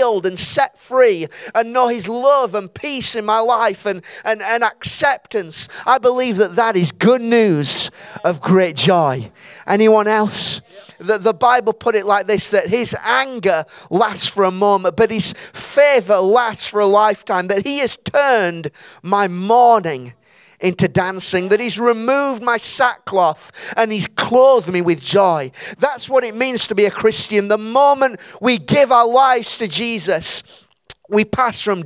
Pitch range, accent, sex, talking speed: 175-235 Hz, British, male, 165 wpm